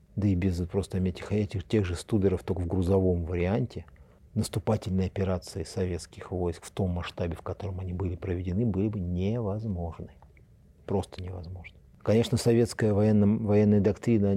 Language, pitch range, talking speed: Russian, 90-110 Hz, 140 wpm